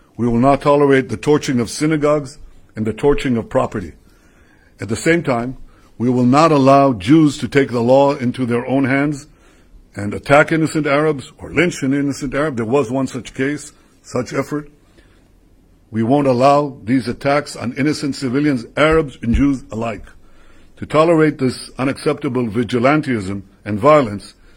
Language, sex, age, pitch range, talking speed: Dutch, male, 60-79, 105-140 Hz, 160 wpm